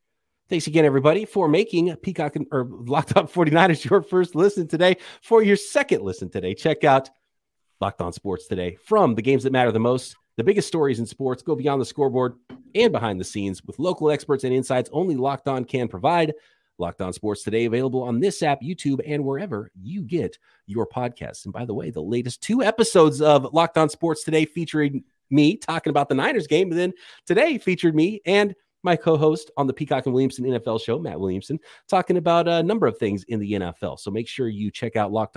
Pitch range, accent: 120-165 Hz, American